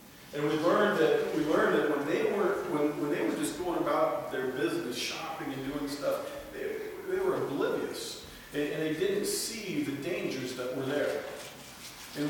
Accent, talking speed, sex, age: American, 185 wpm, male, 40-59